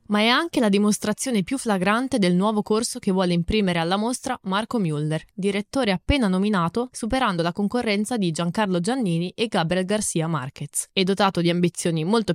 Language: Italian